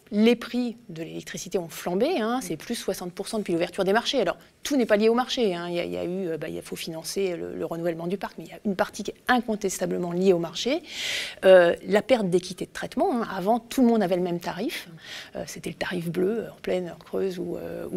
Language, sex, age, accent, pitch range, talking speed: French, female, 30-49, French, 185-235 Hz, 255 wpm